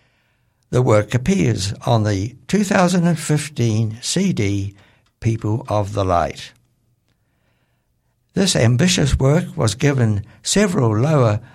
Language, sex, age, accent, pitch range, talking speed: English, male, 60-79, British, 110-145 Hz, 95 wpm